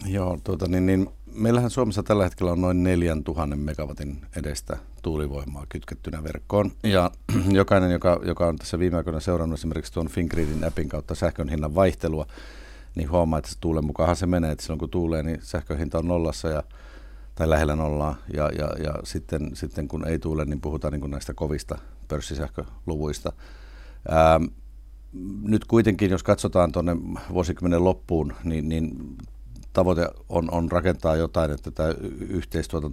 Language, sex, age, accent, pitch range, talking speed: Finnish, male, 50-69, native, 75-90 Hz, 150 wpm